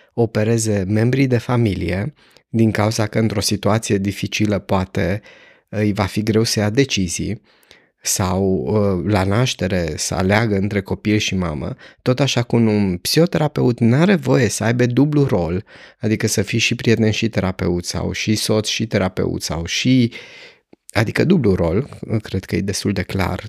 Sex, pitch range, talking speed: male, 105-155 Hz, 160 wpm